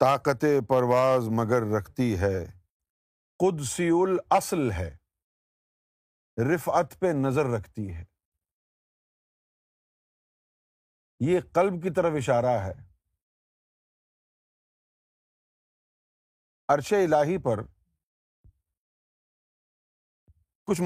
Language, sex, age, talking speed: Urdu, male, 50-69, 65 wpm